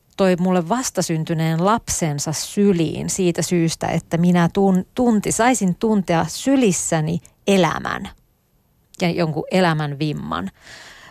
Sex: female